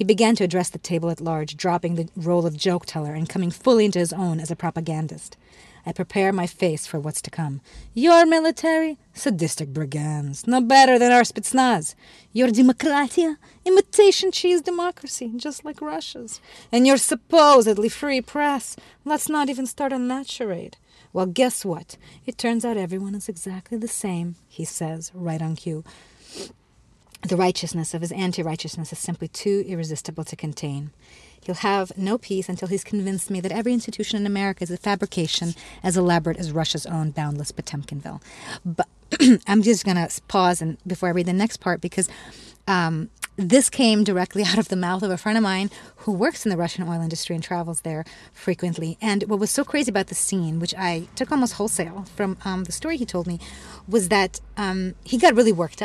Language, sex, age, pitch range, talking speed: English, female, 30-49, 170-230 Hz, 185 wpm